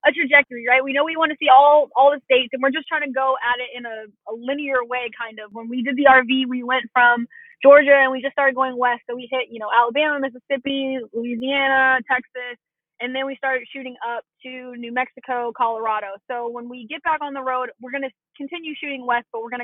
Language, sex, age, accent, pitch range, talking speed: English, female, 20-39, American, 240-295 Hz, 240 wpm